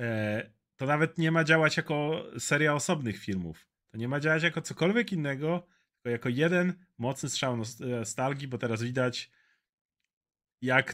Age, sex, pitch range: 30-49, male, 125-160 Hz